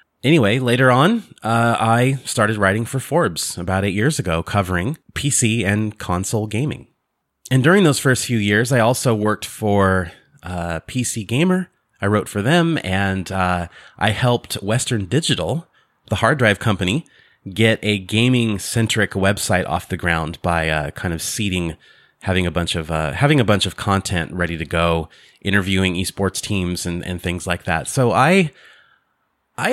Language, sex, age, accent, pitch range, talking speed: English, male, 30-49, American, 90-125 Hz, 165 wpm